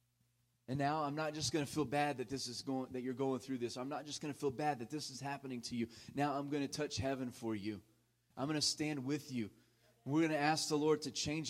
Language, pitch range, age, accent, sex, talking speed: English, 130-165 Hz, 30-49, American, male, 275 wpm